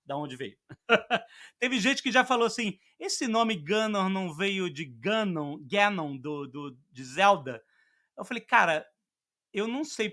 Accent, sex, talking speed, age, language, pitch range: Brazilian, male, 160 wpm, 30-49, Portuguese, 165-230 Hz